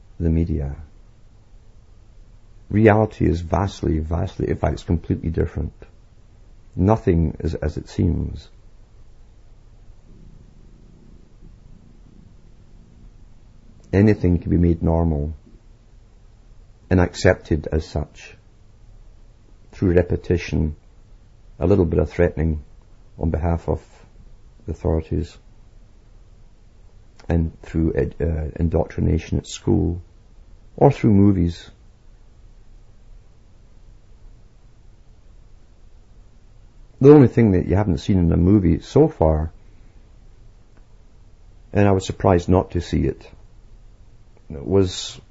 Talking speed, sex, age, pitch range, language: 85 wpm, male, 50-69, 85-110 Hz, English